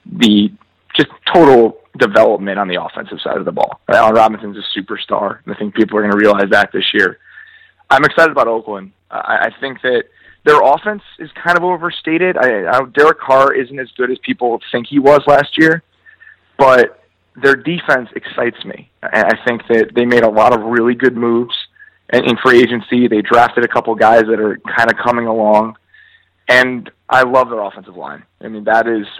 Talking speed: 190 wpm